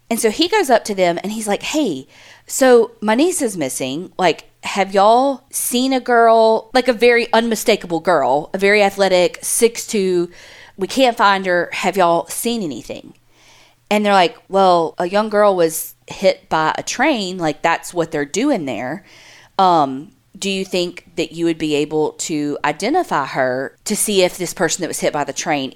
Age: 40-59